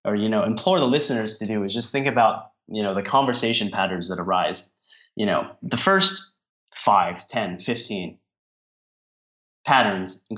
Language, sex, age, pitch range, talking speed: English, male, 20-39, 105-135 Hz, 160 wpm